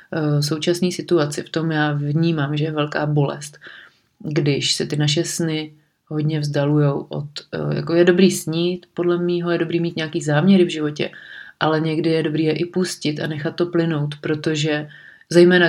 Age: 30-49